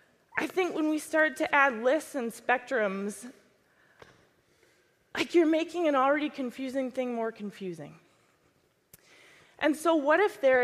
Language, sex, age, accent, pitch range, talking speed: English, female, 20-39, American, 195-295 Hz, 135 wpm